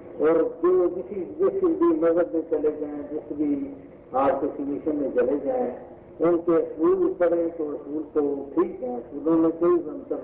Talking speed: 165 wpm